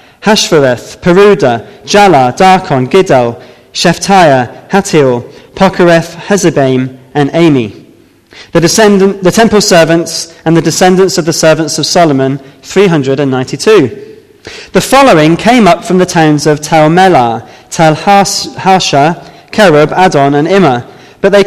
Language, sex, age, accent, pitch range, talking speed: English, male, 20-39, British, 140-190 Hz, 125 wpm